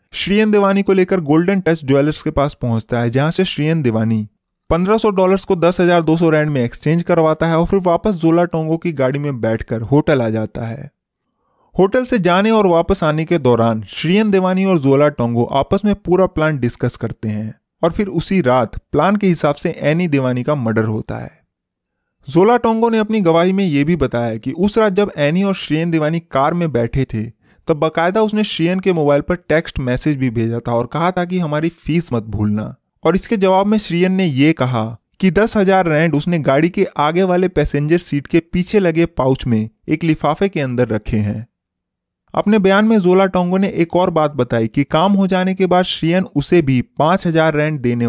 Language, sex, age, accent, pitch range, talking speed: Hindi, male, 20-39, native, 125-185 Hz, 205 wpm